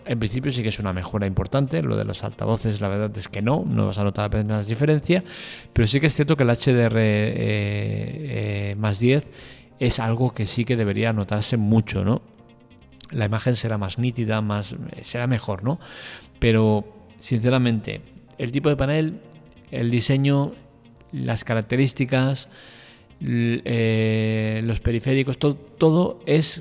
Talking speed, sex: 155 wpm, male